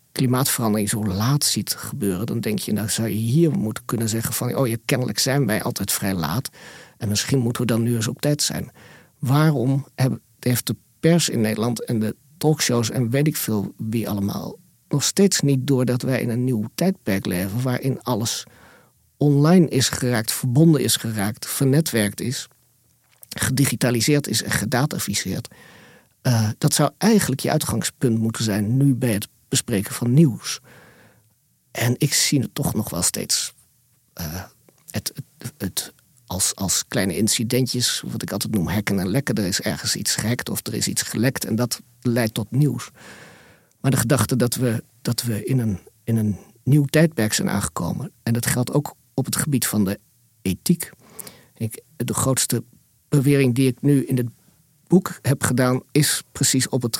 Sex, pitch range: male, 115-140 Hz